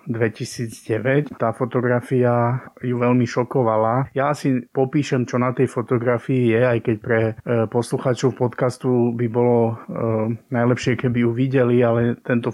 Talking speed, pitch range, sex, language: 135 wpm, 115-130 Hz, male, Slovak